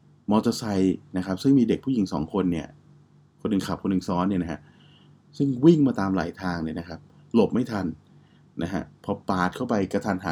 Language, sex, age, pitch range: Thai, male, 20-39, 90-115 Hz